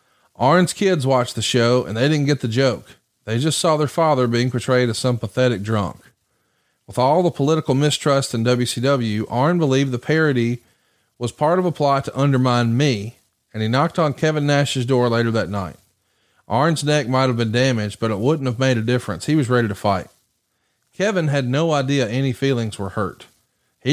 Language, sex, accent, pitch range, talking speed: English, male, American, 115-150 Hz, 195 wpm